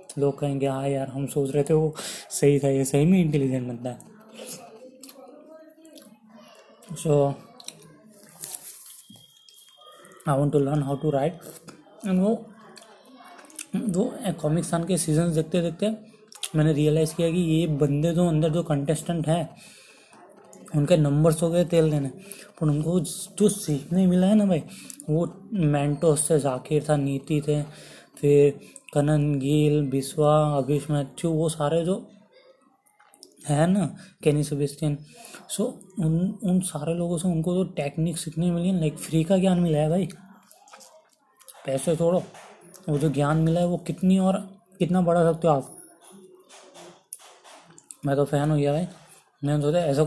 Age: 20-39